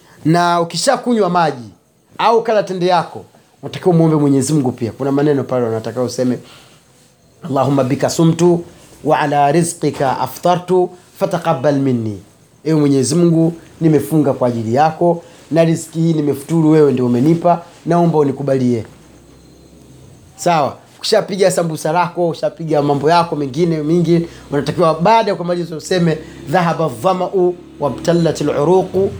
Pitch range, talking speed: 140-175 Hz, 130 wpm